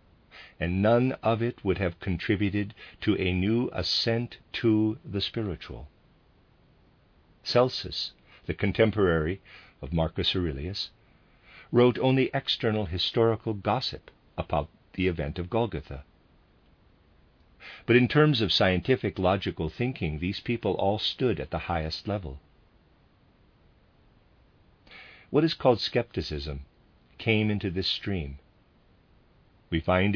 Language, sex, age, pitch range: English, male, 50-69, 85-110 Hz